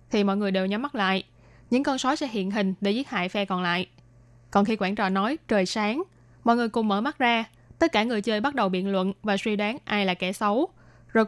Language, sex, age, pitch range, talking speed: Vietnamese, female, 20-39, 195-235 Hz, 255 wpm